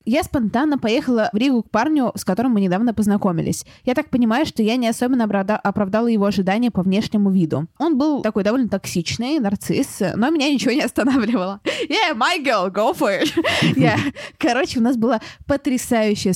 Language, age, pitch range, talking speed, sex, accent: Russian, 20-39, 195-255 Hz, 180 wpm, female, native